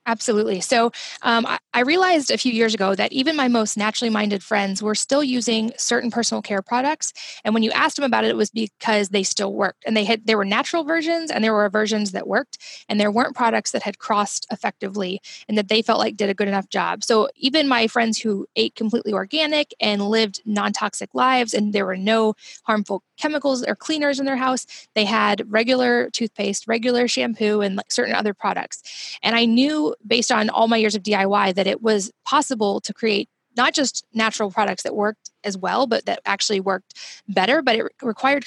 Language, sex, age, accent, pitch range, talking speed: English, female, 20-39, American, 205-245 Hz, 205 wpm